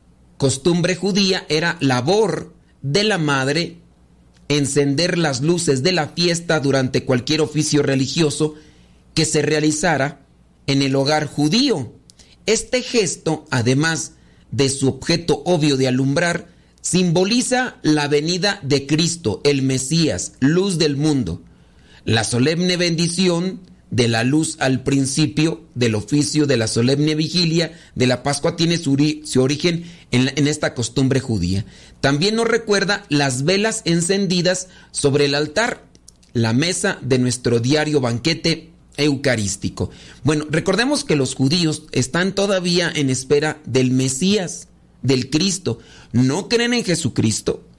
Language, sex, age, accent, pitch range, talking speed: Spanish, male, 40-59, Mexican, 130-170 Hz, 125 wpm